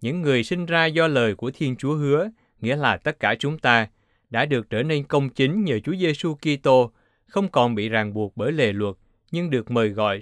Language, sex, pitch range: Vietnamese, male, 105-145 Hz